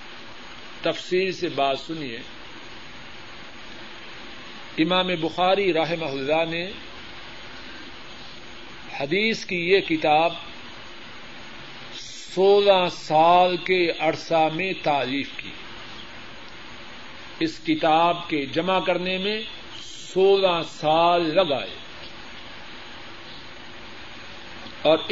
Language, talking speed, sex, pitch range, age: Urdu, 70 wpm, male, 160-190 Hz, 50-69